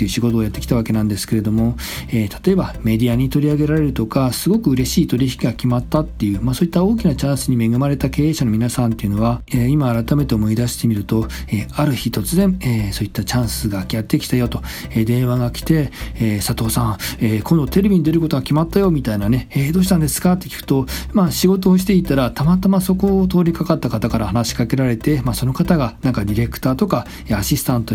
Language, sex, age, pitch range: Japanese, male, 40-59, 115-155 Hz